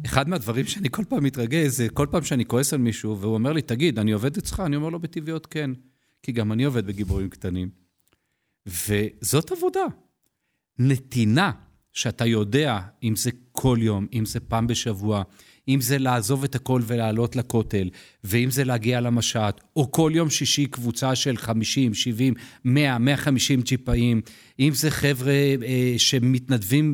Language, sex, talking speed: Hebrew, male, 160 wpm